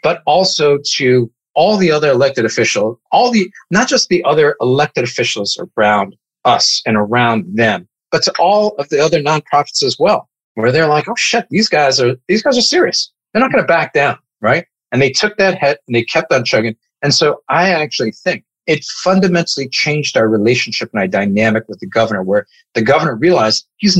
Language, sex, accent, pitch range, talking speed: English, male, American, 115-180 Hz, 200 wpm